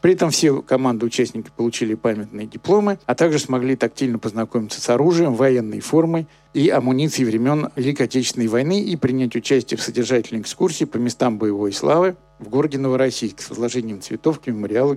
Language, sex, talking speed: Russian, male, 165 wpm